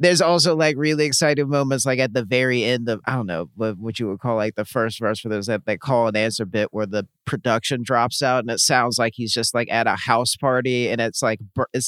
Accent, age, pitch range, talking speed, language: American, 30-49, 115-135 Hz, 260 wpm, English